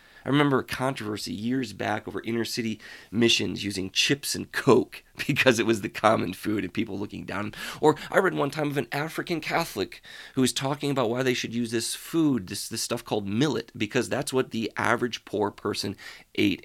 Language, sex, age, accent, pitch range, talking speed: English, male, 30-49, American, 110-155 Hz, 200 wpm